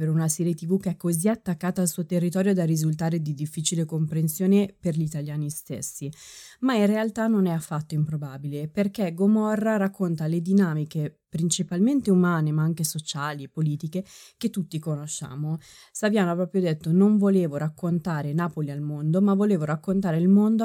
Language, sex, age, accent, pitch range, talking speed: Italian, female, 20-39, native, 150-190 Hz, 165 wpm